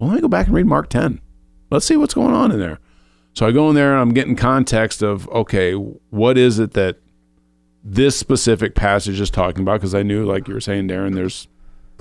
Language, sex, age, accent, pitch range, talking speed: English, male, 40-59, American, 90-115 Hz, 235 wpm